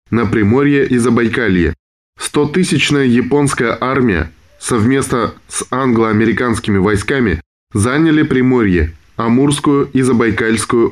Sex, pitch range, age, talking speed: male, 100-130 Hz, 20-39, 95 wpm